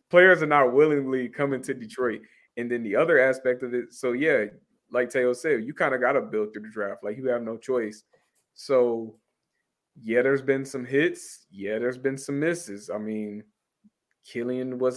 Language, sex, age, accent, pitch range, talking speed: English, male, 20-39, American, 110-145 Hz, 195 wpm